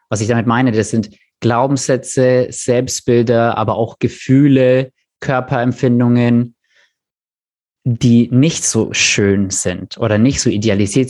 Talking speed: 115 wpm